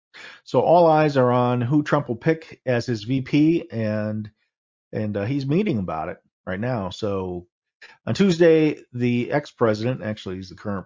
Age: 40-59